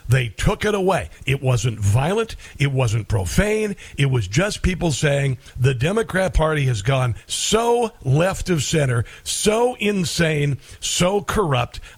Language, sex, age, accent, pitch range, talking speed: English, male, 60-79, American, 130-185 Hz, 140 wpm